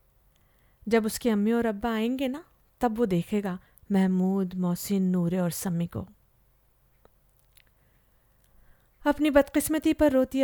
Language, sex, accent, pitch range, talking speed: Hindi, female, native, 200-255 Hz, 115 wpm